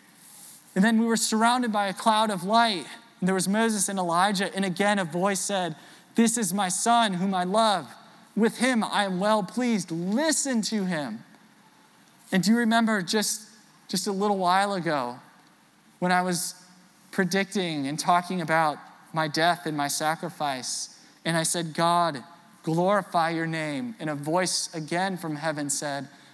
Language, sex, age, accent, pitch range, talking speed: English, male, 20-39, American, 180-230 Hz, 165 wpm